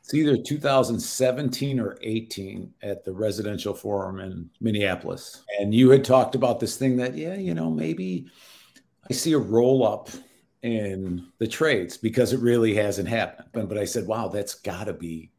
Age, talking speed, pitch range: 50-69, 165 wpm, 100-130 Hz